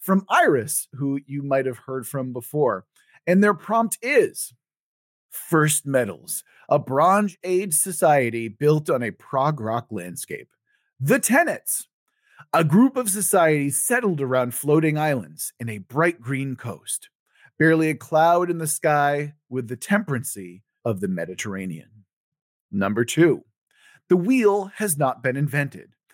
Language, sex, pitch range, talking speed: English, male, 125-175 Hz, 140 wpm